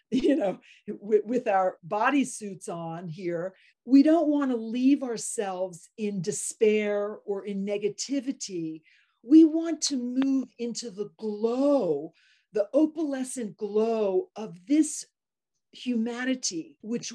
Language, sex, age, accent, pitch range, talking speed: English, female, 40-59, American, 205-285 Hz, 115 wpm